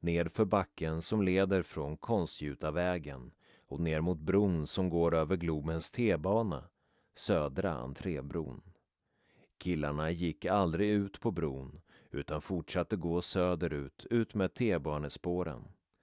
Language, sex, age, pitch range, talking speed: Swedish, male, 30-49, 80-105 Hz, 120 wpm